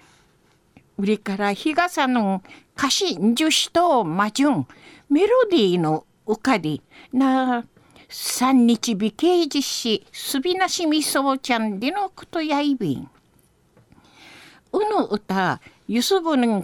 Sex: female